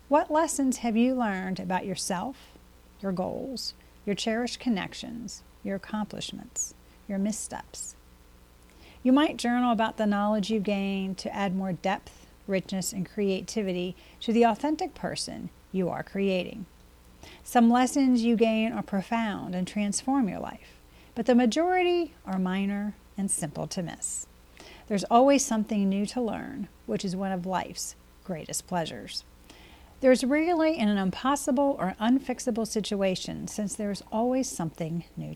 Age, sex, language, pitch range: 40-59, female, English, 185-240 Hz